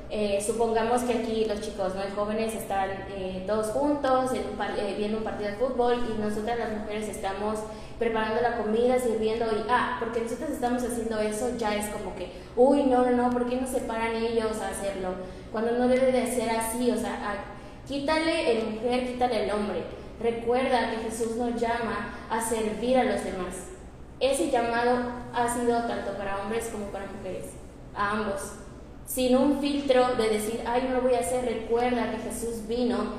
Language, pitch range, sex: Spanish, 210-240 Hz, female